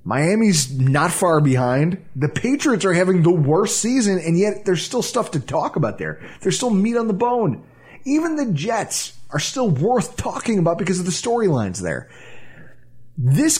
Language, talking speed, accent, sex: English, 175 wpm, American, male